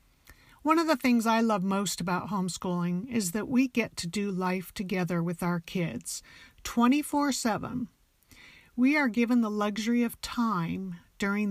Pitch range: 185-235 Hz